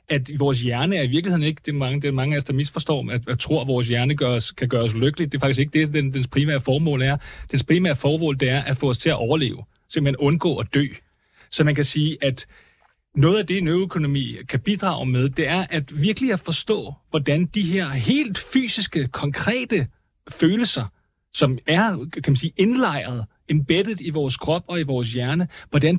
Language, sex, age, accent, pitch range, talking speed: Danish, male, 30-49, native, 140-185 Hz, 210 wpm